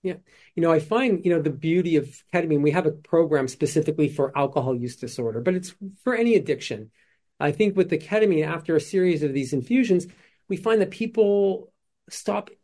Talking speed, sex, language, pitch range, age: 195 wpm, male, English, 150-195 Hz, 40-59